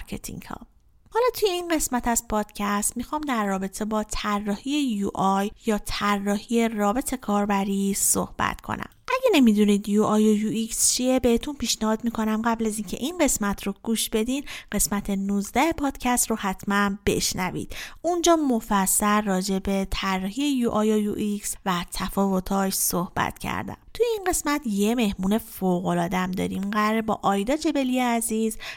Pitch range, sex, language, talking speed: 190-250 Hz, female, Persian, 140 wpm